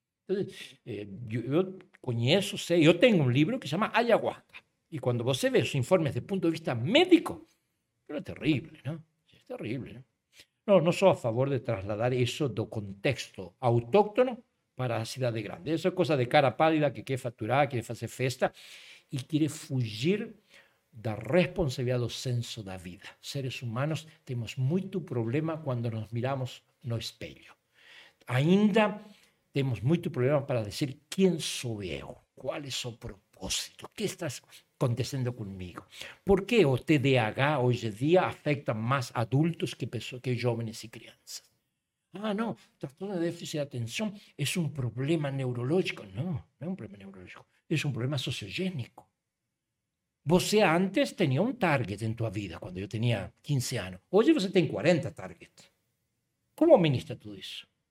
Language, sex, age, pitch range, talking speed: Portuguese, male, 60-79, 120-175 Hz, 160 wpm